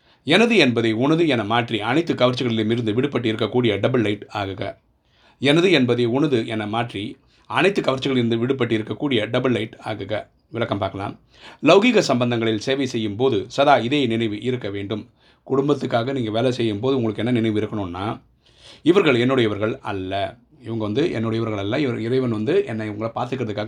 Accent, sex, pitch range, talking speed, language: native, male, 105-120 Hz, 165 wpm, Tamil